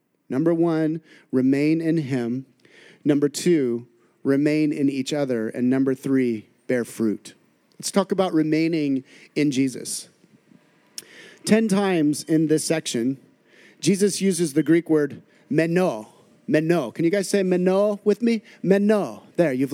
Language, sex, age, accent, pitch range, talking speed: English, male, 30-49, American, 145-195 Hz, 135 wpm